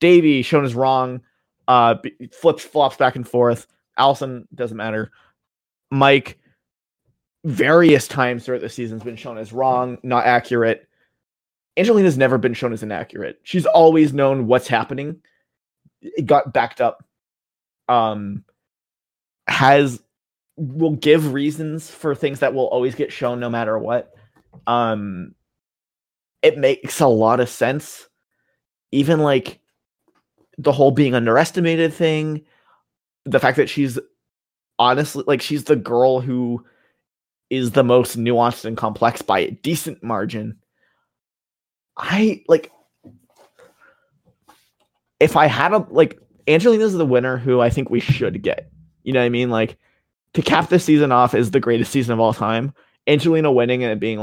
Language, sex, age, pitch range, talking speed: English, male, 20-39, 120-150 Hz, 145 wpm